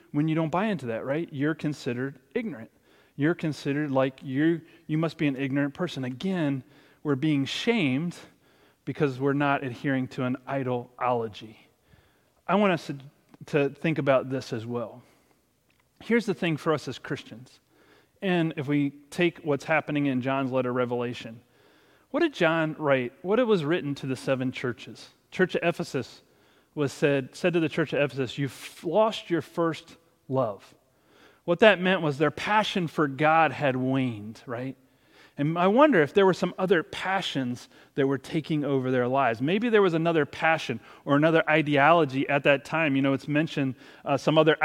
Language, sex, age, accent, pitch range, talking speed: English, male, 30-49, American, 135-160 Hz, 175 wpm